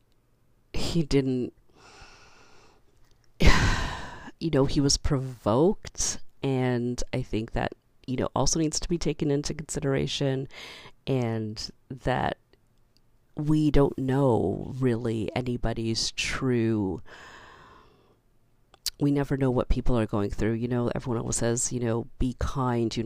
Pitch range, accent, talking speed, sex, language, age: 110-130 Hz, American, 120 wpm, female, English, 40-59